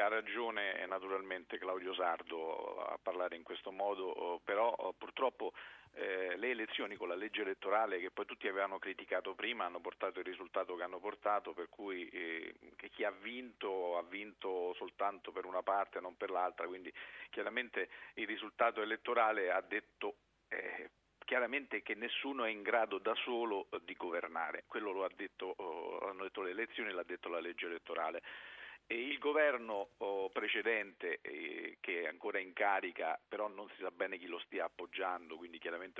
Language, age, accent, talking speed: Italian, 50-69, native, 165 wpm